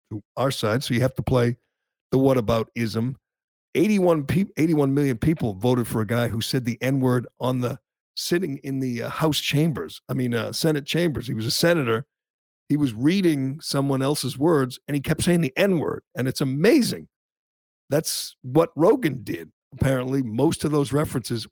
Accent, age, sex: American, 50-69, male